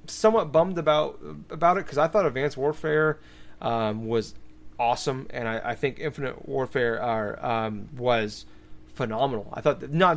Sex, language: male, English